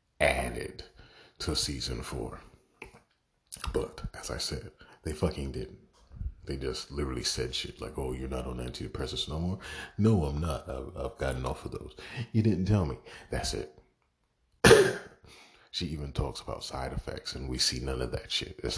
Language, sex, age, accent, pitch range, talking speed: English, male, 40-59, American, 65-80 Hz, 170 wpm